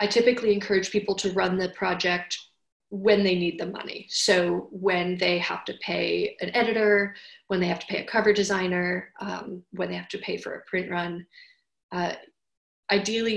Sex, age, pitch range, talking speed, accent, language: female, 30-49, 180-215 Hz, 185 wpm, American, English